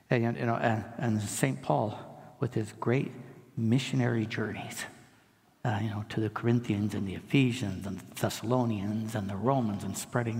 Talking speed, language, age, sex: 165 wpm, English, 60-79, male